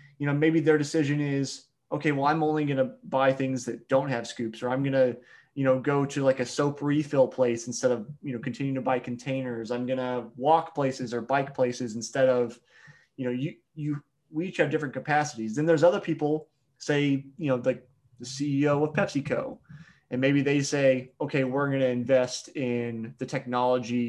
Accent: American